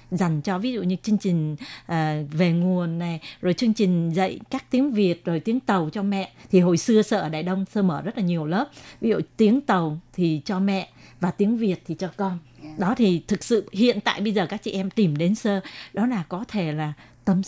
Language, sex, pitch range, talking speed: Vietnamese, female, 170-215 Hz, 235 wpm